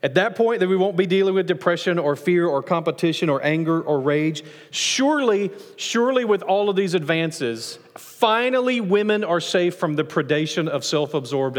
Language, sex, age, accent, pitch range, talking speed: English, male, 40-59, American, 140-185 Hz, 175 wpm